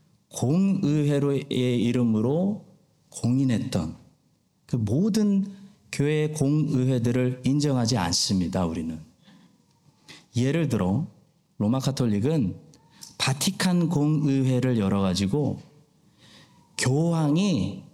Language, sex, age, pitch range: Korean, male, 40-59, 130-185 Hz